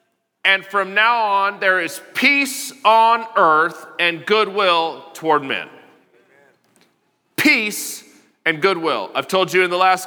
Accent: American